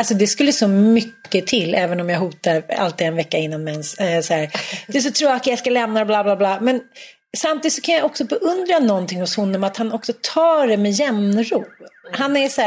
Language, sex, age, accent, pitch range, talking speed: Swedish, female, 30-49, native, 205-275 Hz, 245 wpm